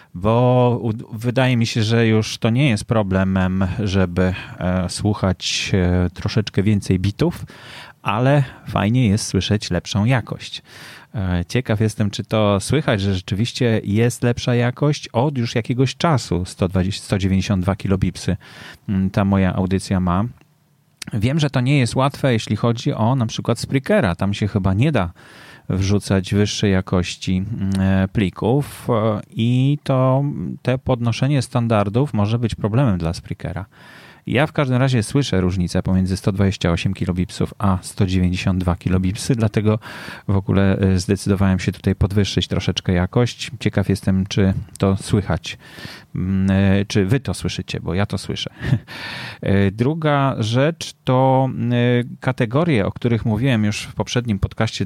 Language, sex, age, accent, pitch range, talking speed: Polish, male, 30-49, native, 95-120 Hz, 125 wpm